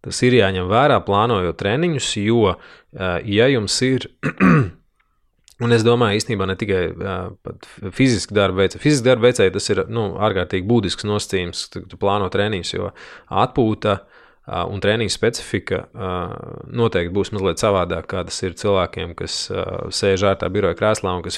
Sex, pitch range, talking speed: male, 95-115 Hz, 150 wpm